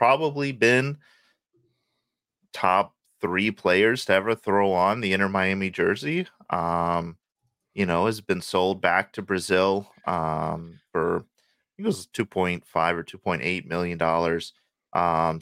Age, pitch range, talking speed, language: 30-49, 85-95 Hz, 130 wpm, English